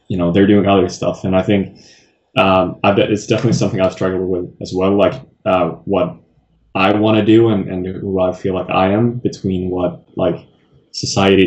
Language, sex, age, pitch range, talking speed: English, male, 20-39, 95-105 Hz, 205 wpm